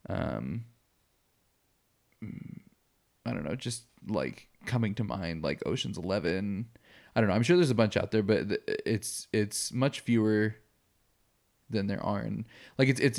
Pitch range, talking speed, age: 100-115 Hz, 155 wpm, 20-39